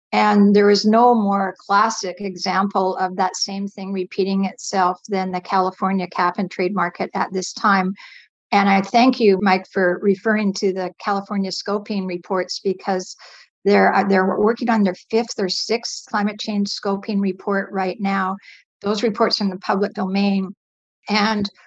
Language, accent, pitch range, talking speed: English, American, 190-220 Hz, 160 wpm